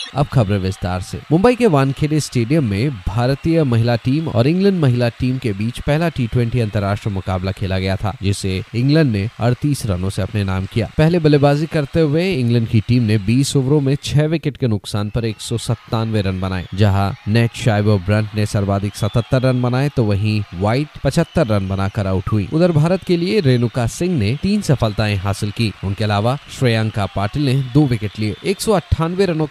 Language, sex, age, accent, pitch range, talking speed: Hindi, male, 20-39, native, 105-145 Hz, 185 wpm